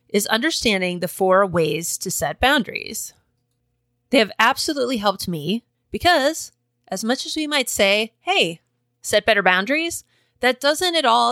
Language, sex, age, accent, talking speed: English, female, 30-49, American, 150 wpm